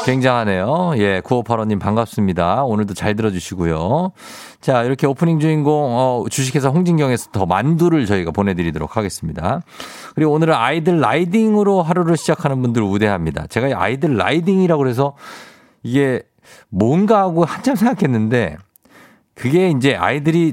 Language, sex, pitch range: Korean, male, 95-155 Hz